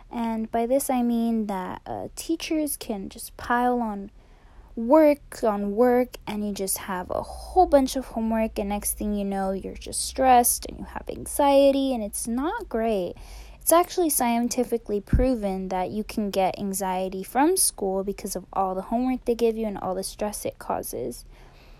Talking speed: 180 wpm